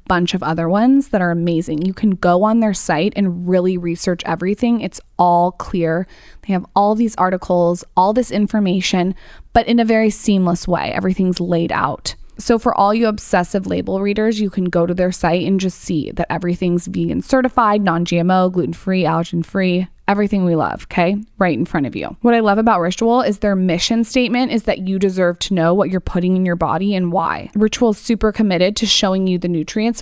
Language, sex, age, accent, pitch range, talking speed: English, female, 20-39, American, 175-210 Hz, 200 wpm